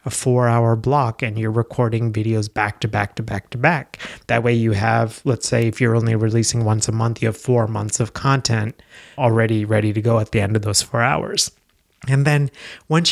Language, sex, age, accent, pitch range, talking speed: English, male, 30-49, American, 110-130 Hz, 220 wpm